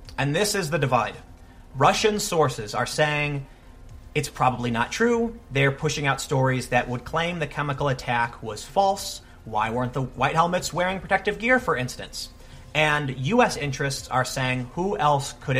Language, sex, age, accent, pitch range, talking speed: English, male, 30-49, American, 125-170 Hz, 165 wpm